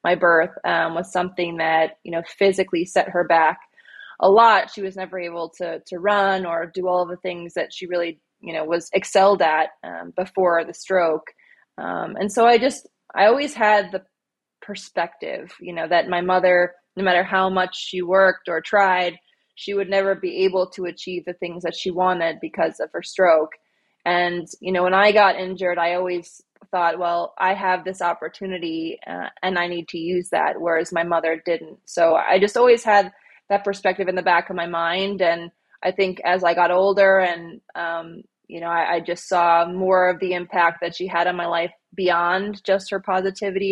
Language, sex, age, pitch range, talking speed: English, female, 20-39, 170-190 Hz, 200 wpm